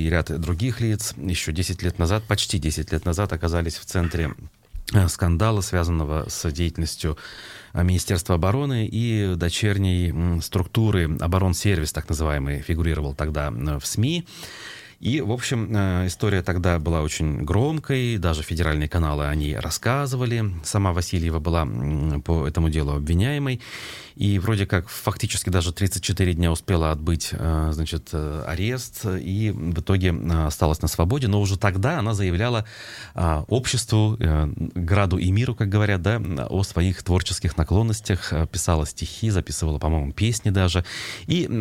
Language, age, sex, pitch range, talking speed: Russian, 30-49, male, 80-105 Hz, 130 wpm